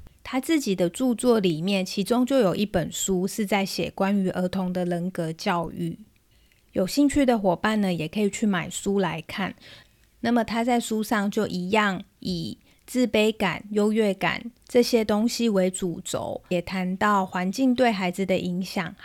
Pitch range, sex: 185-220 Hz, female